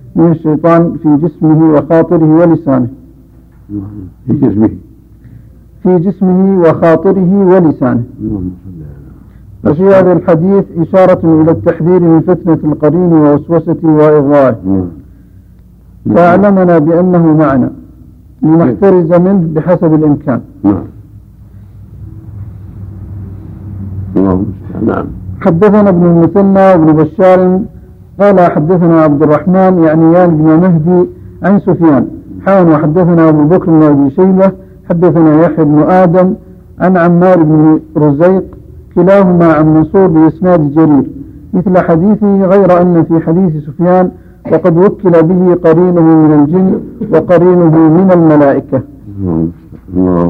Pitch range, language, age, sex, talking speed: 115-180 Hz, Arabic, 60-79, male, 100 wpm